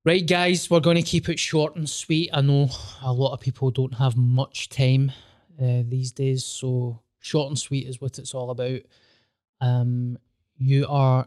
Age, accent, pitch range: 20-39, British, 120-145 Hz